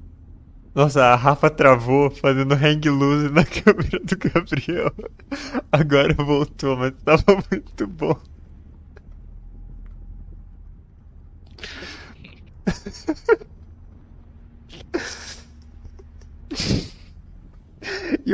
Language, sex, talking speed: Portuguese, male, 55 wpm